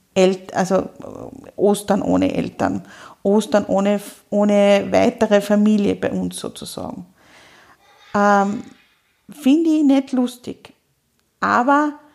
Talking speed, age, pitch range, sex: 90 wpm, 50-69, 200-245 Hz, female